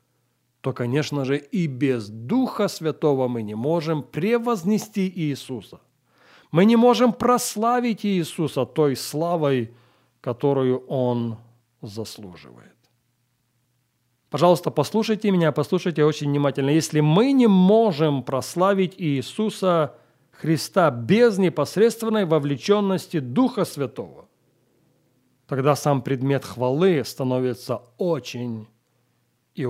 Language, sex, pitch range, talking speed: English, male, 125-175 Hz, 95 wpm